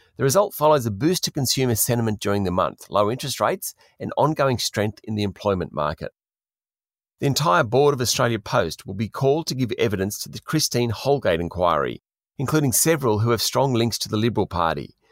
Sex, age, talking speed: male, 40-59, 190 wpm